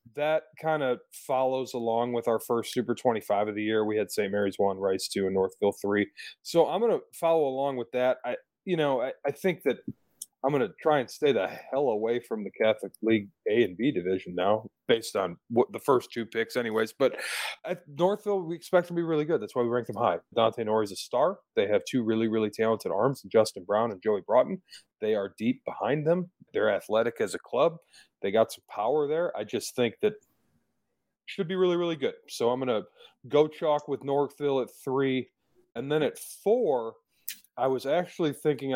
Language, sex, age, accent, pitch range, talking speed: English, male, 30-49, American, 110-180 Hz, 215 wpm